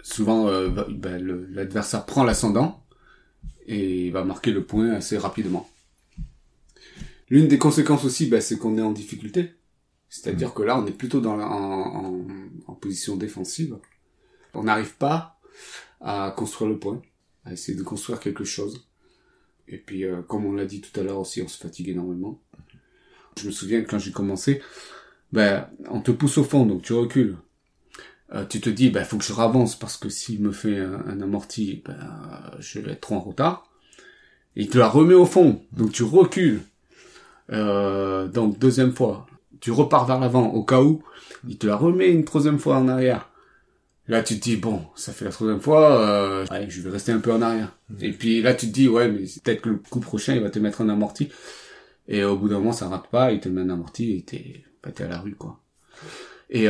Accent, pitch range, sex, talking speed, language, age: French, 100-125 Hz, male, 205 wpm, French, 30-49